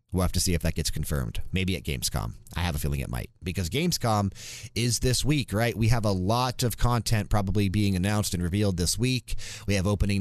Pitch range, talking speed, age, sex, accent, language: 90-115 Hz, 230 wpm, 30-49, male, American, English